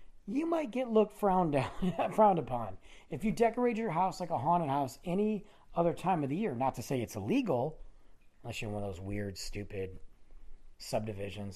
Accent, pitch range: American, 110-180 Hz